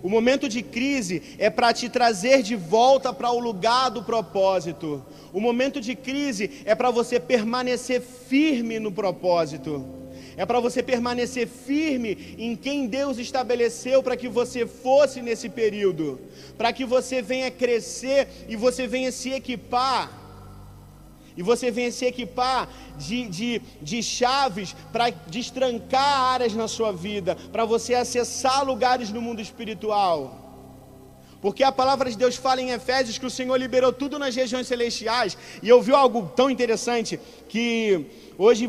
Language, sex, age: Portuguese, male, 40-59